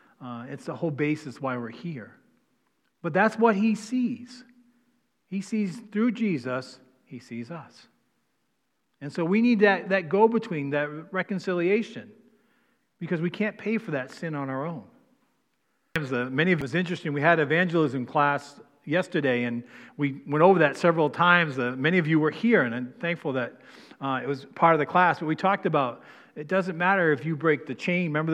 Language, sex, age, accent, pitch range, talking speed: English, male, 40-59, American, 150-200 Hz, 185 wpm